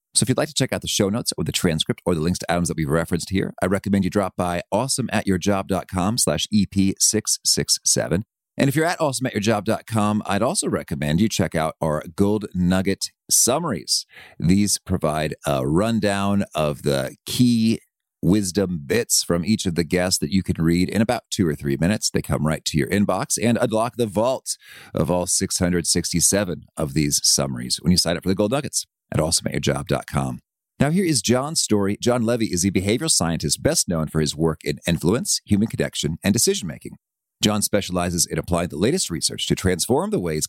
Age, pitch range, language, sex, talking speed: 40-59, 85-115 Hz, English, male, 190 wpm